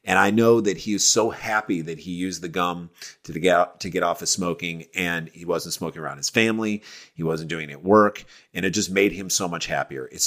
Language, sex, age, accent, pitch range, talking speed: English, male, 30-49, American, 90-110 Hz, 250 wpm